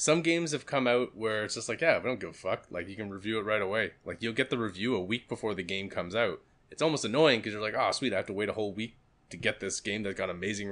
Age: 20-39